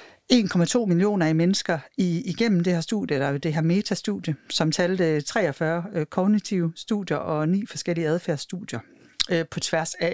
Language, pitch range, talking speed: Danish, 160-215 Hz, 140 wpm